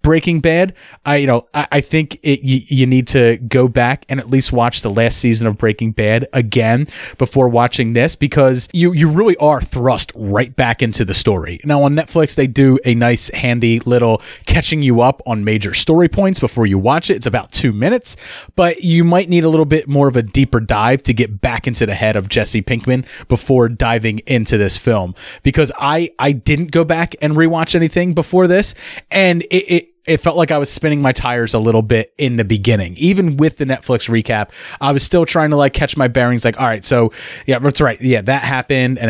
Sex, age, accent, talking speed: male, 30-49, American, 220 wpm